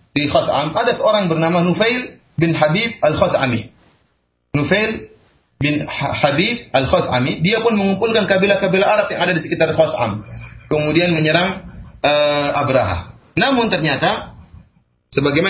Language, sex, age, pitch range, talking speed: Malay, male, 30-49, 130-190 Hz, 115 wpm